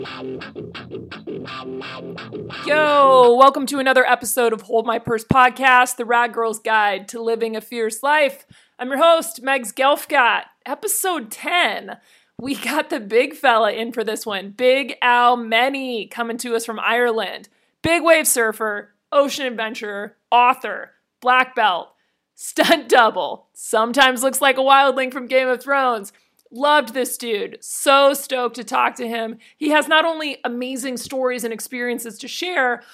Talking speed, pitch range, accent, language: 145 wpm, 225-275 Hz, American, English